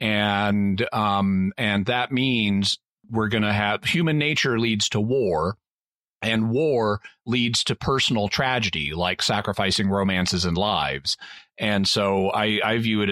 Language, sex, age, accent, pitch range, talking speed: English, male, 40-59, American, 100-120 Hz, 140 wpm